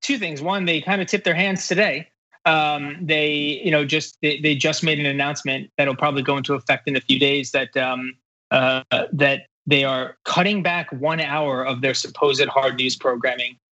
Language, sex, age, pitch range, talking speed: English, male, 20-39, 135-170 Hz, 200 wpm